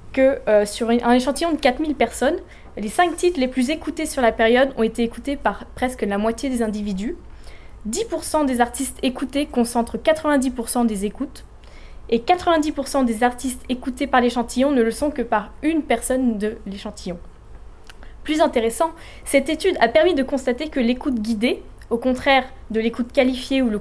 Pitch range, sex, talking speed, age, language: 225-280 Hz, female, 170 wpm, 20-39, French